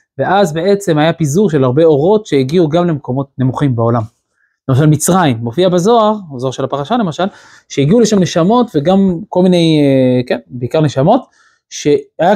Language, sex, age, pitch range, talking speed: Hebrew, male, 20-39, 135-190 Hz, 145 wpm